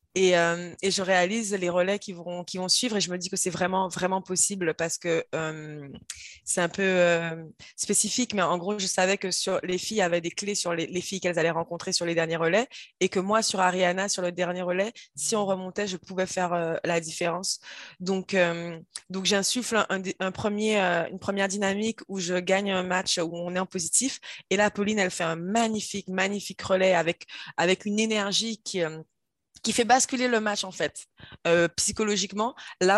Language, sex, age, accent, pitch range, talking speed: French, female, 20-39, French, 175-200 Hz, 210 wpm